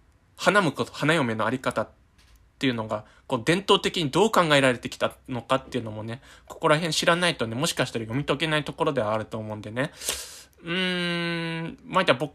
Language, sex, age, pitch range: Japanese, male, 20-39, 110-155 Hz